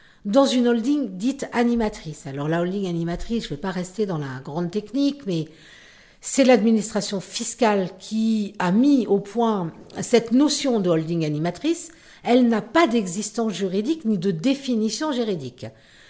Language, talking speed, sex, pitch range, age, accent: French, 155 wpm, female, 185-245 Hz, 50-69, French